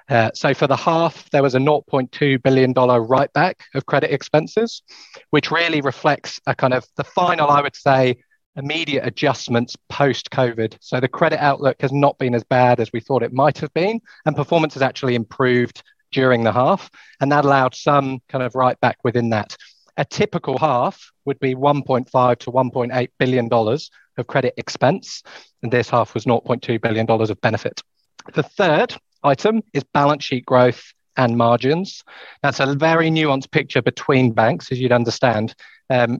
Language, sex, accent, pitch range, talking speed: English, male, British, 120-145 Hz, 165 wpm